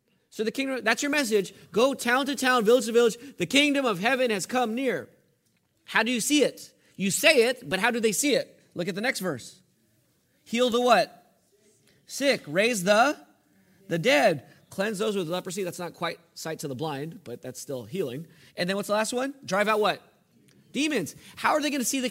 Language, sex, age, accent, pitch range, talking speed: English, male, 30-49, American, 175-245 Hz, 215 wpm